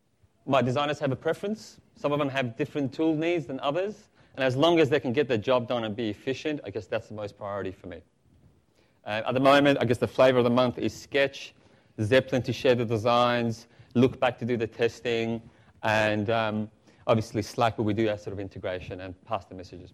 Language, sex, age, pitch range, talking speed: English, male, 30-49, 110-135 Hz, 225 wpm